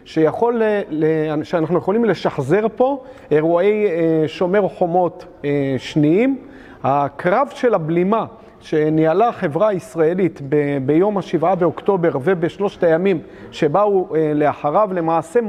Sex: male